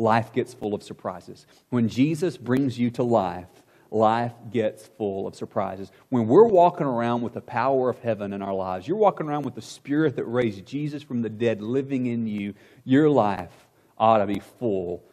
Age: 40-59